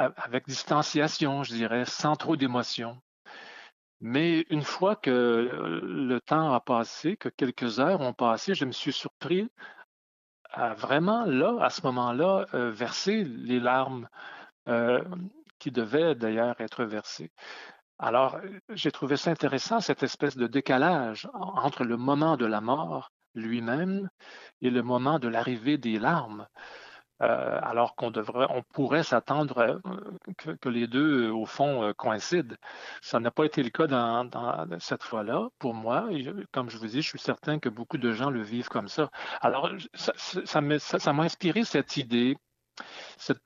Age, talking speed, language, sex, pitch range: 40-59, 155 wpm, French, male, 120-160 Hz